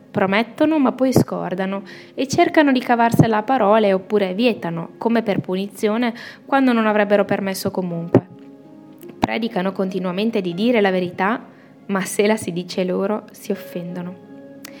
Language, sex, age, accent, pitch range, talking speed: Italian, female, 20-39, native, 190-245 Hz, 140 wpm